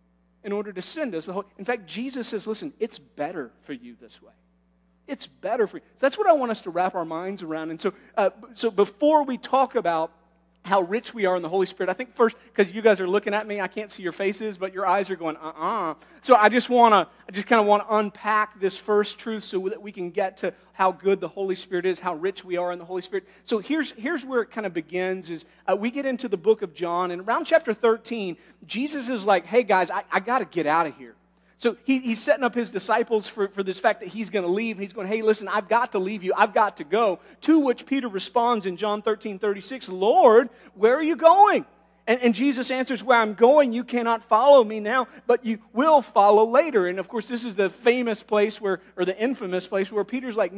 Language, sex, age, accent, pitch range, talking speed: English, male, 40-59, American, 190-250 Hz, 250 wpm